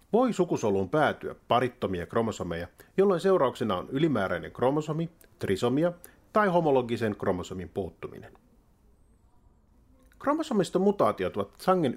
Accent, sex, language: native, male, Finnish